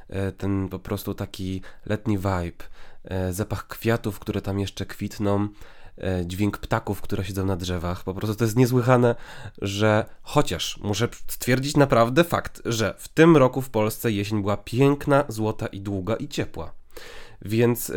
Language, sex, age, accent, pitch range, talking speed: Polish, male, 20-39, native, 95-115 Hz, 145 wpm